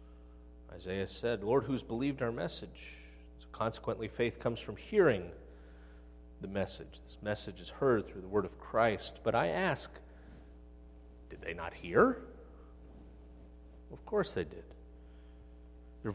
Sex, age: male, 40-59